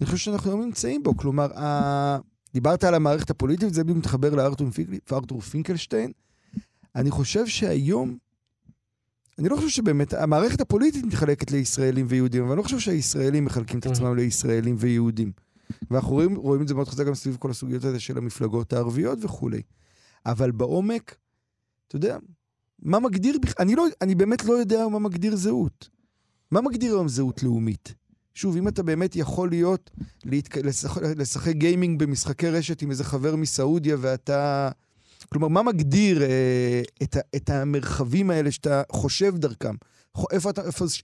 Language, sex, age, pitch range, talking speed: Hebrew, male, 40-59, 125-175 Hz, 150 wpm